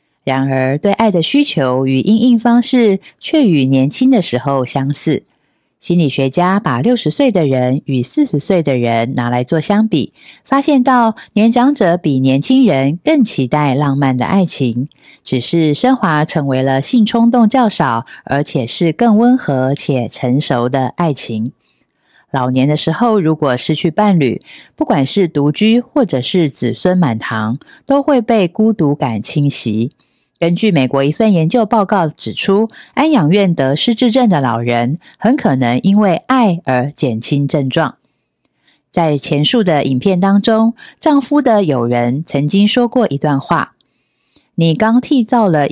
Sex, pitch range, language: female, 135-220 Hz, Chinese